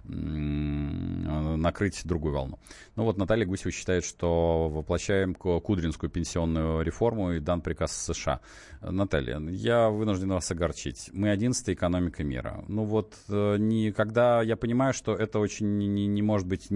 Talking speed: 130 wpm